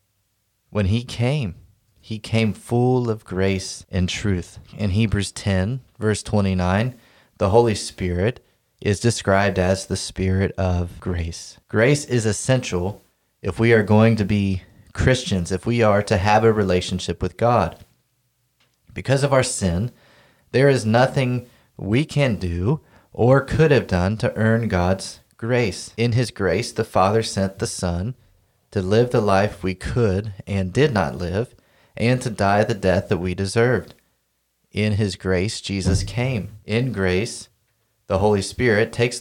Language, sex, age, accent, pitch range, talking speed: English, male, 30-49, American, 95-120 Hz, 150 wpm